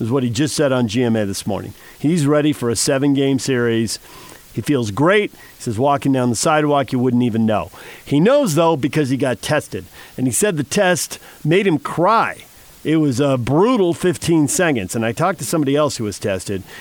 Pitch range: 125-175 Hz